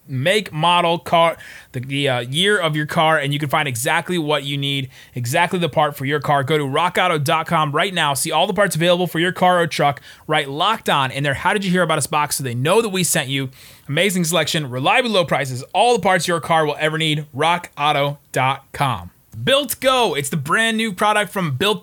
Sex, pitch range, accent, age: male, 145-190 Hz, American, 30-49